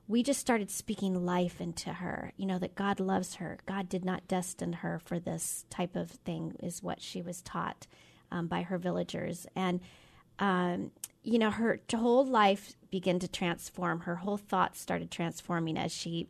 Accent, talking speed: American, 180 wpm